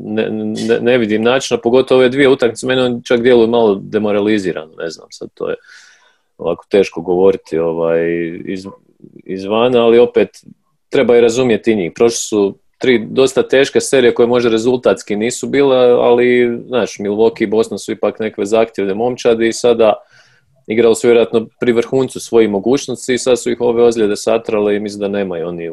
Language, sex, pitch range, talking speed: Croatian, male, 105-125 Hz, 175 wpm